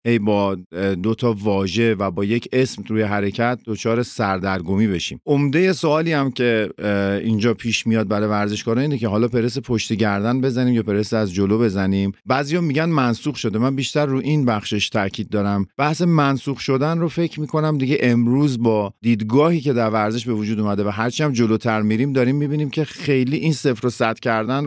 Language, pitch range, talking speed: Persian, 110-140 Hz, 185 wpm